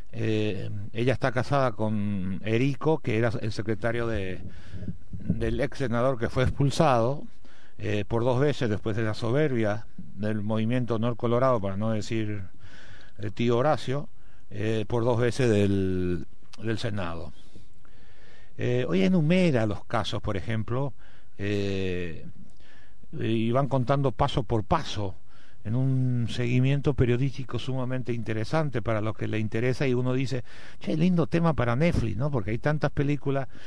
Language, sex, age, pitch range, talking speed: Spanish, male, 60-79, 110-140 Hz, 145 wpm